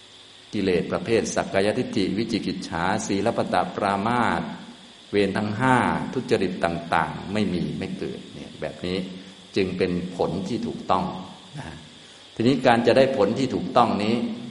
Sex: male